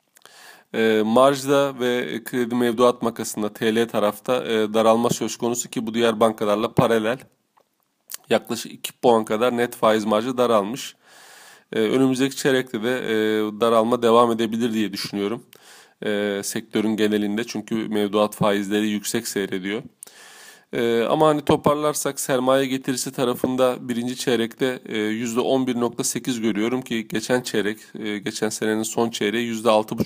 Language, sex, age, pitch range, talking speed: Turkish, male, 30-49, 110-125 Hz, 110 wpm